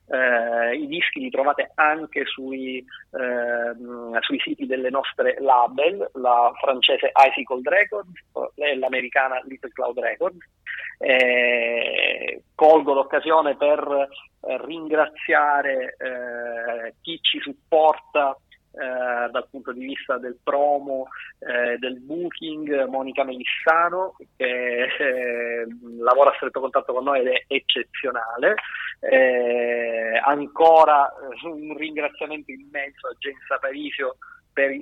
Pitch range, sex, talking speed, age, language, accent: 125-155 Hz, male, 110 wpm, 30-49, Italian, native